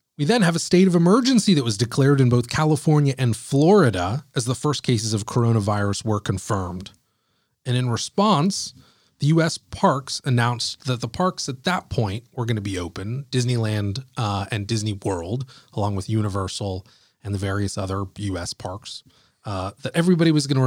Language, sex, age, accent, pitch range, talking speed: English, male, 30-49, American, 105-135 Hz, 170 wpm